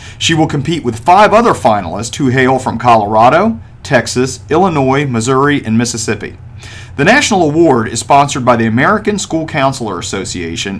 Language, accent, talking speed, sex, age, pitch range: English, American, 150 wpm, male, 40-59, 110-145 Hz